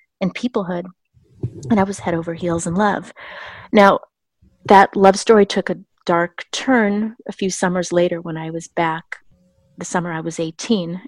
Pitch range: 170-195 Hz